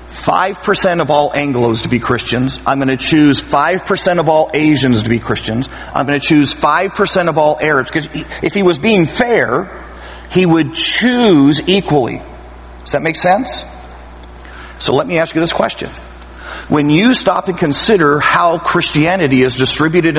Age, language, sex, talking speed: 50-69, English, male, 175 wpm